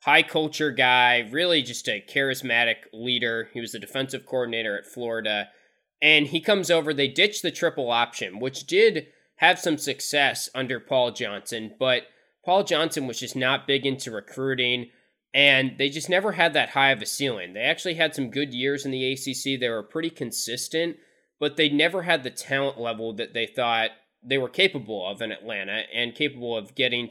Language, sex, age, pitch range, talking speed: English, male, 20-39, 125-160 Hz, 185 wpm